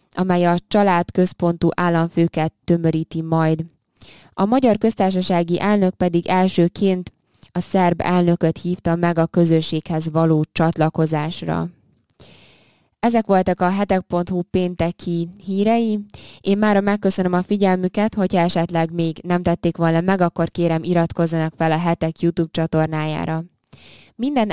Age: 20-39